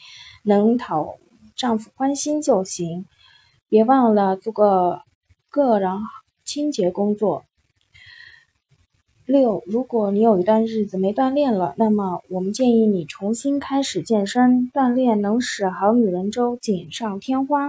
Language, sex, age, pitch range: Chinese, female, 20-39, 205-255 Hz